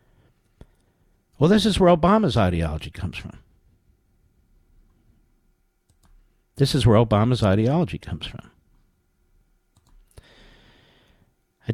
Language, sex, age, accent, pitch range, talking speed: English, male, 50-69, American, 115-160 Hz, 80 wpm